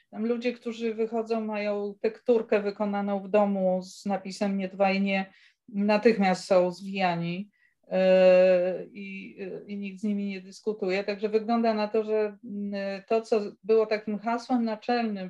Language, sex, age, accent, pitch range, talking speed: Polish, female, 40-59, native, 185-220 Hz, 135 wpm